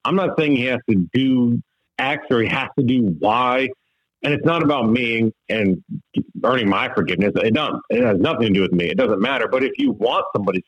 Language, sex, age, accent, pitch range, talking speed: English, male, 40-59, American, 110-140 Hz, 225 wpm